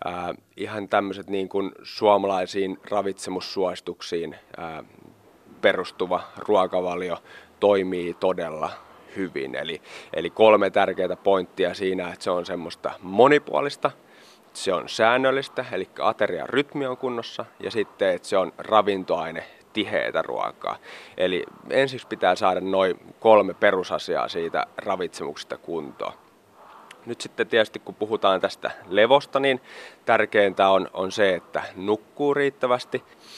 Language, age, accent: Finnish, 30-49, native